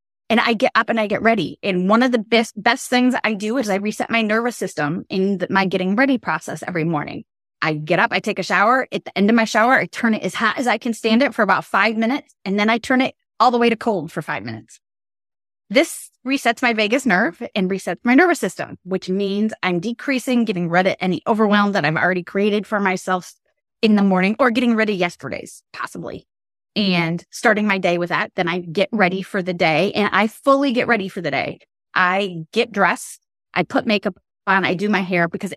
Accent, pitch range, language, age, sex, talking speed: American, 175-225 Hz, English, 20-39, female, 230 wpm